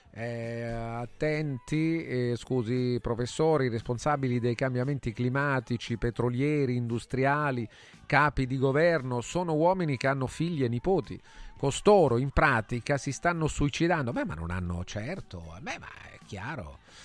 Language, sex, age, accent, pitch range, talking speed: Italian, male, 40-59, native, 110-150 Hz, 125 wpm